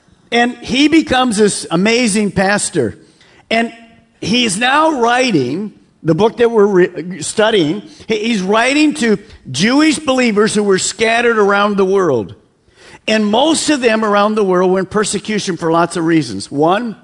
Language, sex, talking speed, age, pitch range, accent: English, male, 145 wpm, 50-69, 180-230 Hz, American